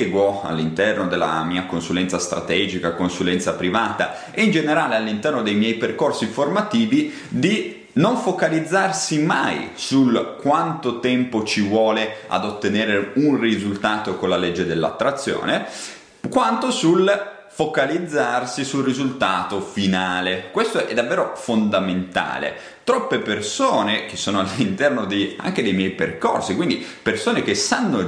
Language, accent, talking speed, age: Italian, native, 120 wpm, 30-49